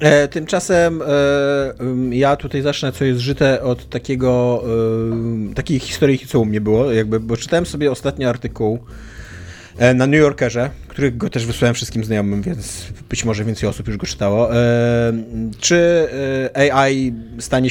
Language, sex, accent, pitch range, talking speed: Polish, male, native, 110-135 Hz, 160 wpm